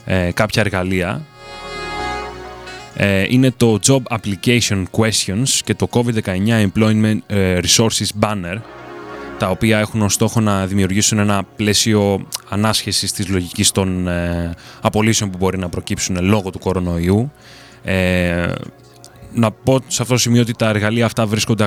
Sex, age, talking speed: male, 20-39, 135 wpm